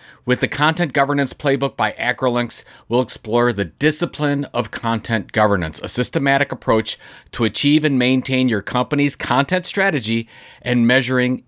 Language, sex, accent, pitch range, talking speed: English, male, American, 115-150 Hz, 140 wpm